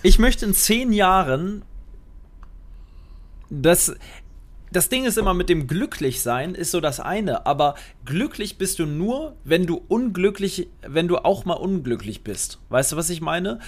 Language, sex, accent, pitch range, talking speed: German, male, German, 135-185 Hz, 160 wpm